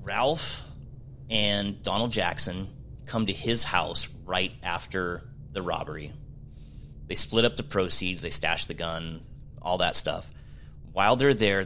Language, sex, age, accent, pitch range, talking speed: English, male, 30-49, American, 95-115 Hz, 140 wpm